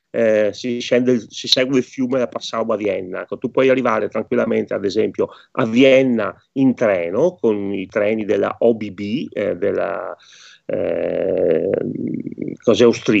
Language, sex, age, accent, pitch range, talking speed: Italian, male, 30-49, native, 110-150 Hz, 140 wpm